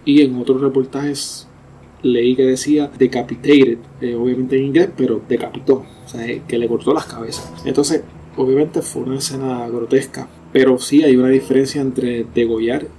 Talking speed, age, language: 155 wpm, 20-39, Spanish